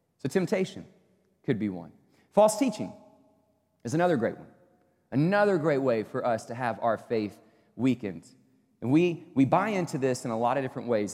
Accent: American